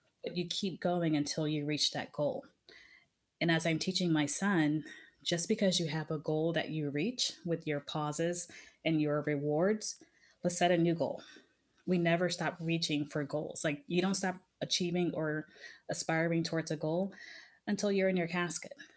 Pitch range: 155-175 Hz